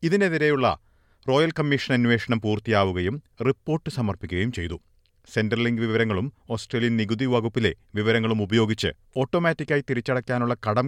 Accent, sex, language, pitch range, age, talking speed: native, male, Malayalam, 100-135 Hz, 40-59, 105 wpm